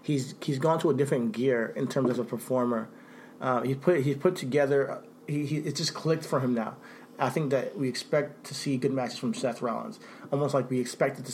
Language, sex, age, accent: English, male, 30-49, American